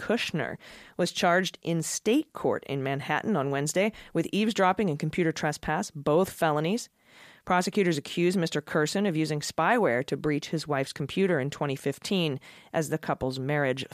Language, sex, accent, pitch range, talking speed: English, female, American, 140-175 Hz, 150 wpm